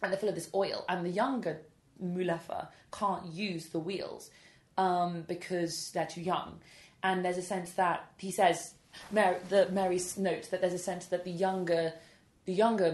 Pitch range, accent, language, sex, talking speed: 160-185 Hz, British, English, female, 180 wpm